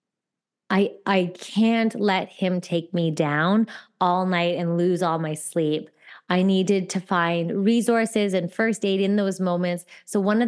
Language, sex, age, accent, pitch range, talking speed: English, female, 20-39, American, 170-205 Hz, 165 wpm